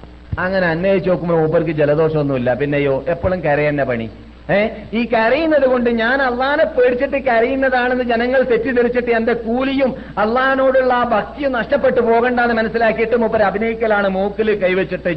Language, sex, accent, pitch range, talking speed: Malayalam, male, native, 125-210 Hz, 120 wpm